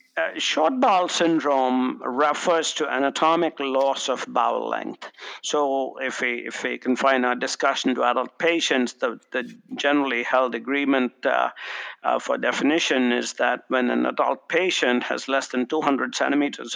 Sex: male